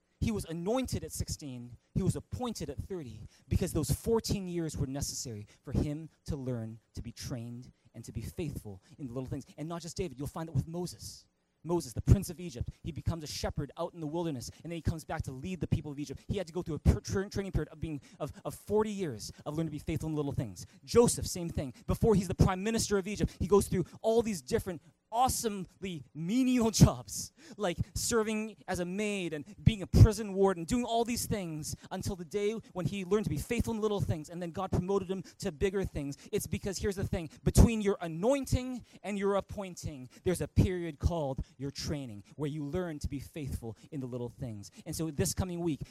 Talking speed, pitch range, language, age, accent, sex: 230 wpm, 135-195 Hz, English, 20-39, American, male